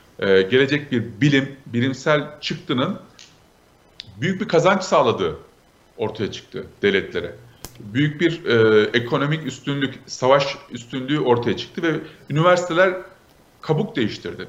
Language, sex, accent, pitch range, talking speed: Turkish, male, native, 120-165 Hz, 105 wpm